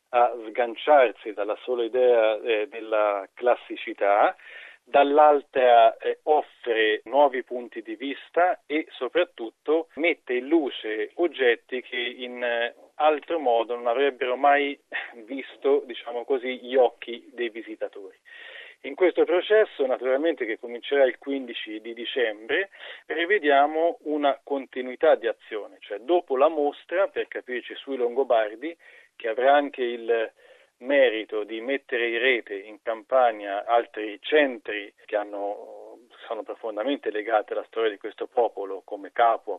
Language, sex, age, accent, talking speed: Italian, male, 40-59, native, 125 wpm